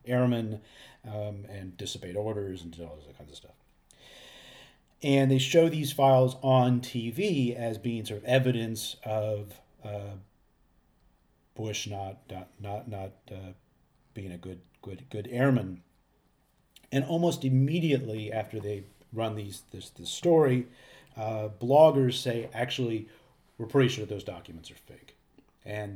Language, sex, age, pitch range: English, male, 40-59, 100-125 Hz